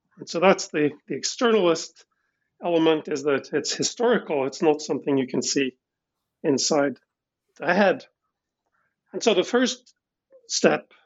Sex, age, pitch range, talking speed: male, 50-69, 150-210 Hz, 135 wpm